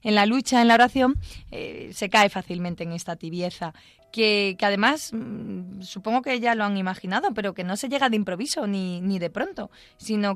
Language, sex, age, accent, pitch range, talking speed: Spanish, female, 20-39, Spanish, 195-245 Hz, 195 wpm